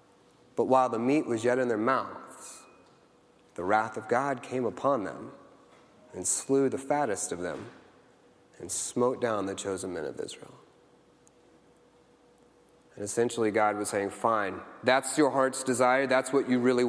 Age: 30-49